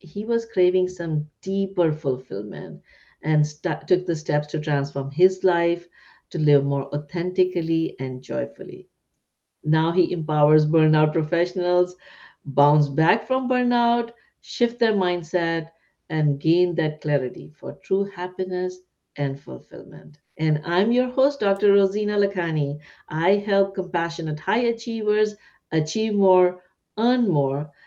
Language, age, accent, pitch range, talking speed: English, 60-79, Indian, 145-190 Hz, 125 wpm